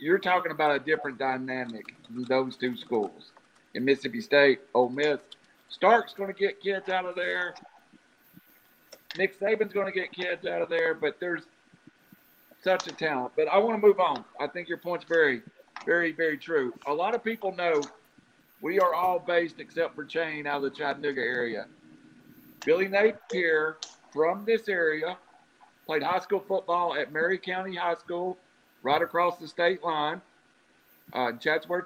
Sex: male